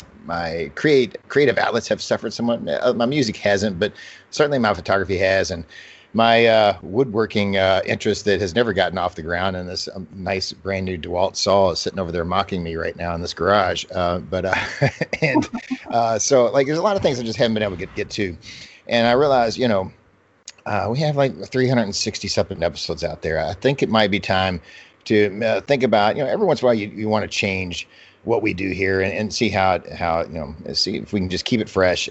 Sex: male